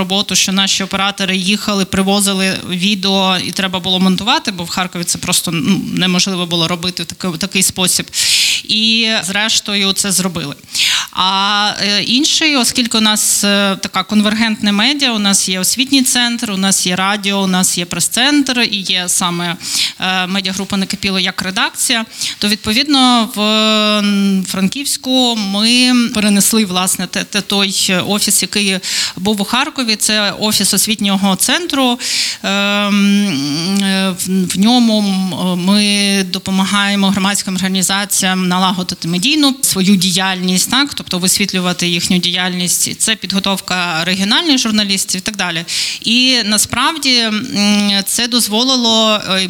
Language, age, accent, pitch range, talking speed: Ukrainian, 20-39, native, 185-220 Hz, 120 wpm